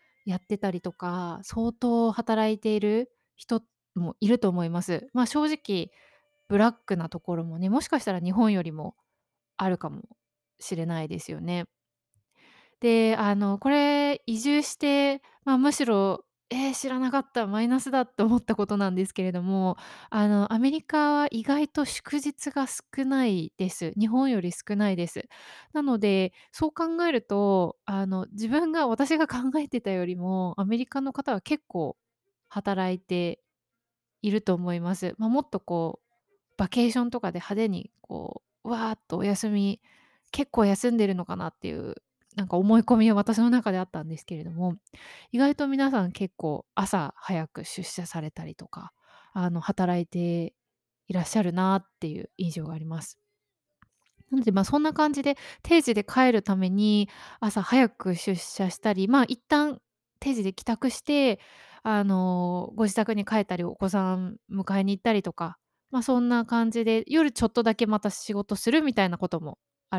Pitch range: 185-250 Hz